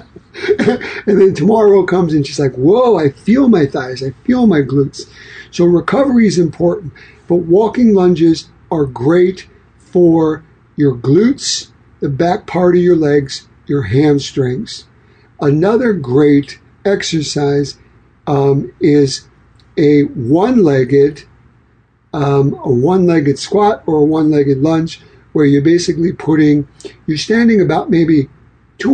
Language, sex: English, male